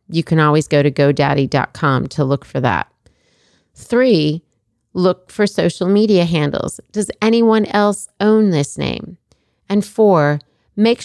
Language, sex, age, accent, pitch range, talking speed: English, female, 40-59, American, 145-195 Hz, 135 wpm